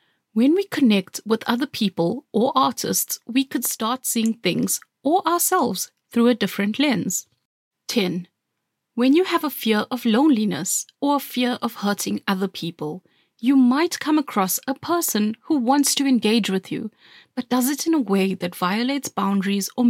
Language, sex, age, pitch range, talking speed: English, female, 30-49, 205-270 Hz, 170 wpm